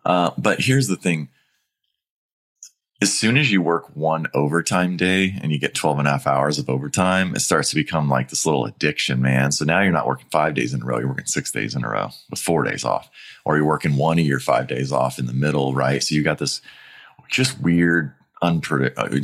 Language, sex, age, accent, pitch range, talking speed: English, male, 30-49, American, 70-80 Hz, 230 wpm